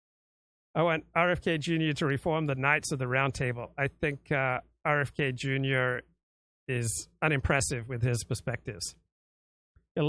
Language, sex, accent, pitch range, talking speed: English, male, American, 130-160 Hz, 130 wpm